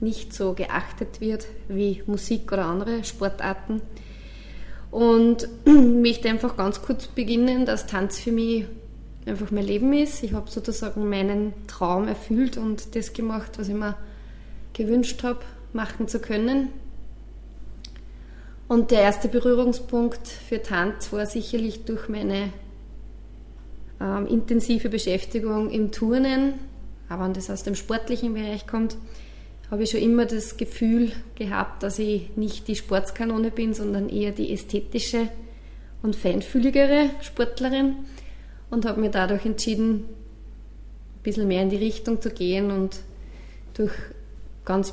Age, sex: 20-39, female